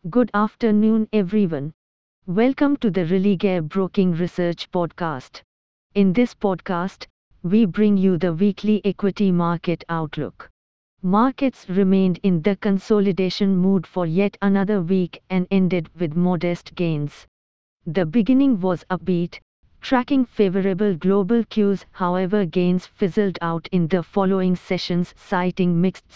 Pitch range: 175-210 Hz